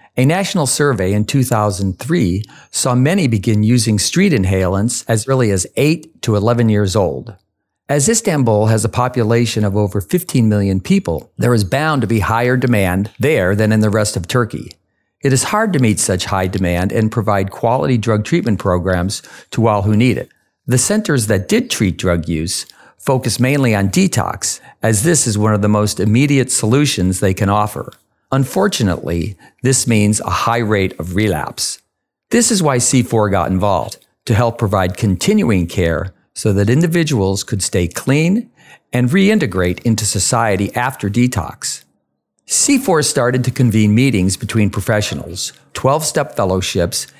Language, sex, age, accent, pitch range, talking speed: English, male, 50-69, American, 100-130 Hz, 160 wpm